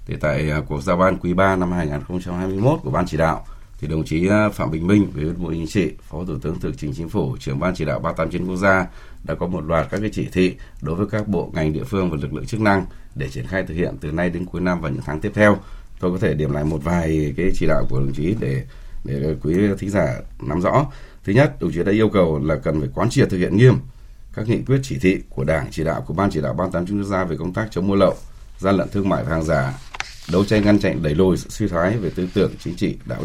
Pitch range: 85-105 Hz